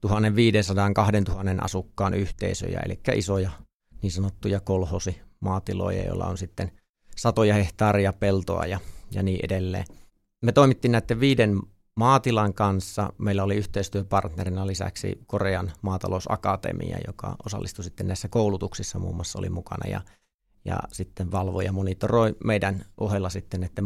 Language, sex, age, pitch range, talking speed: Finnish, male, 30-49, 95-110 Hz, 120 wpm